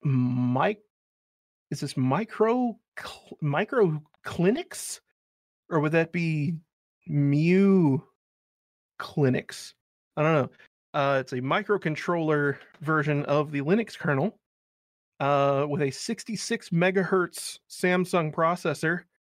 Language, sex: English, male